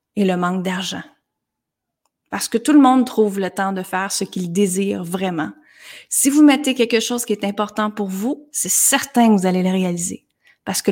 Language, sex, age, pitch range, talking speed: French, female, 30-49, 195-245 Hz, 205 wpm